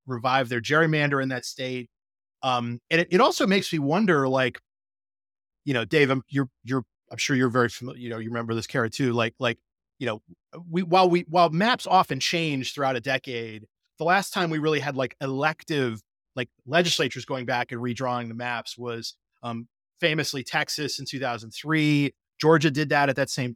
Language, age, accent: English, 30-49, American